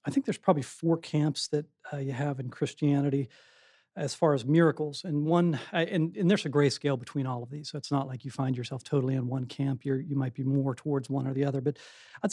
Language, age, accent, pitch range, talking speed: English, 40-59, American, 135-155 Hz, 255 wpm